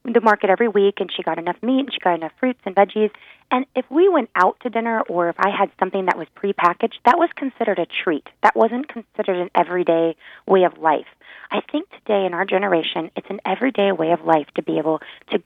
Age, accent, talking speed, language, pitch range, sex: 20-39, American, 235 wpm, English, 175-220 Hz, female